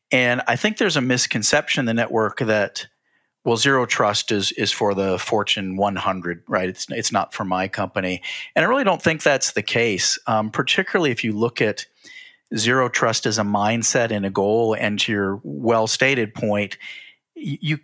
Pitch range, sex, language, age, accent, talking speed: 105-130 Hz, male, English, 40-59, American, 185 wpm